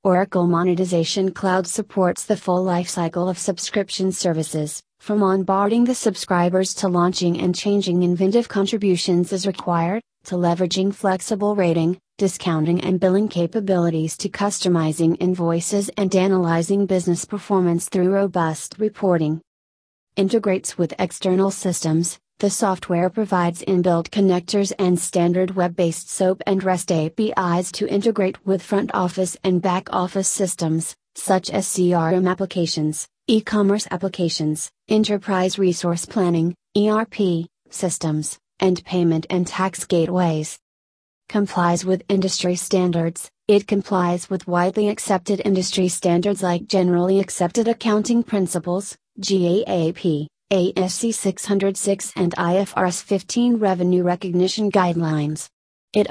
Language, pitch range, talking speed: English, 175-195 Hz, 115 wpm